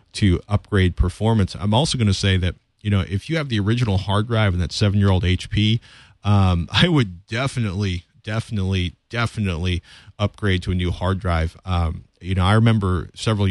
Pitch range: 90-110 Hz